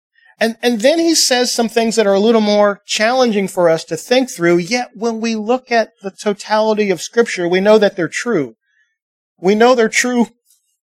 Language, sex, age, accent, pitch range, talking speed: English, male, 40-59, American, 185-240 Hz, 195 wpm